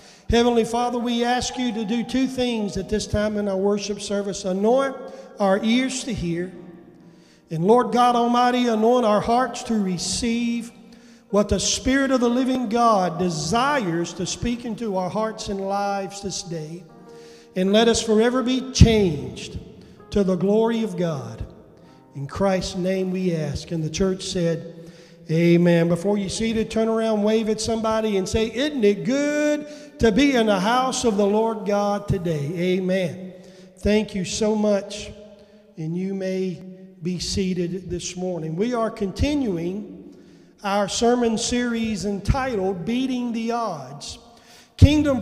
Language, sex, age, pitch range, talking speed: English, male, 40-59, 185-230 Hz, 155 wpm